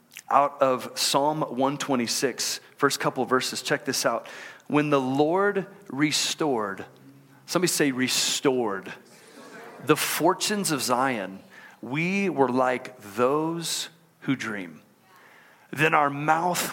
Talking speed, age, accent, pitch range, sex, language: 110 wpm, 40-59, American, 135-180 Hz, male, English